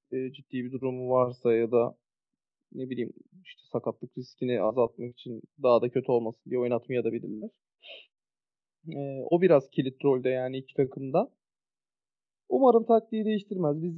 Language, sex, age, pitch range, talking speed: Turkish, male, 30-49, 140-165 Hz, 145 wpm